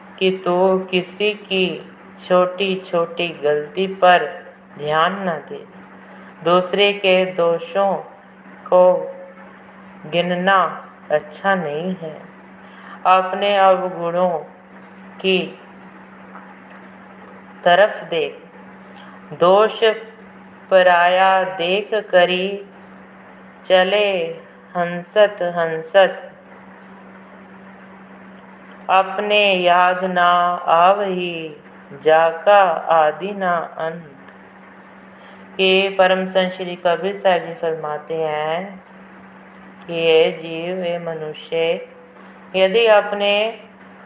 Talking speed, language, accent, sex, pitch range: 65 wpm, Hindi, native, female, 170-195 Hz